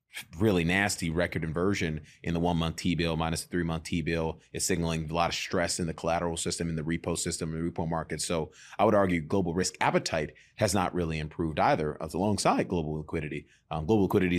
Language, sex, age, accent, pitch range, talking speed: English, male, 30-49, American, 85-105 Hz, 205 wpm